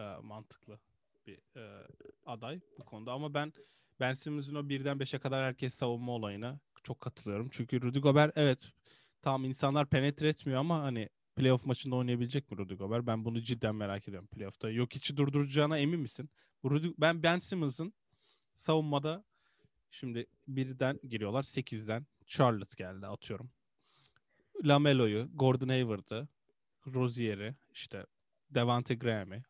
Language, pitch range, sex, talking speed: Turkish, 115-140 Hz, male, 130 wpm